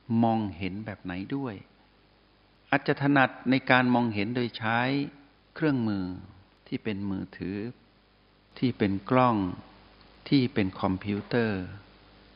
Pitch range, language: 95-125 Hz, Thai